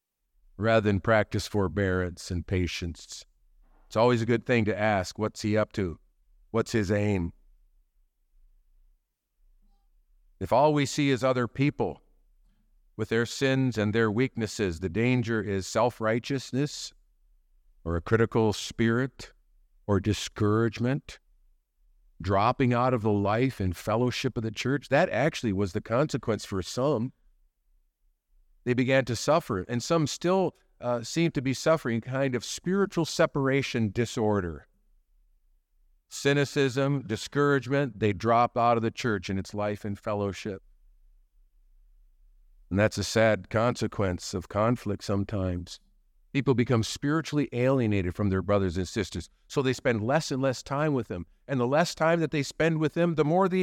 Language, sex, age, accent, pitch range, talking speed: English, male, 50-69, American, 95-135 Hz, 145 wpm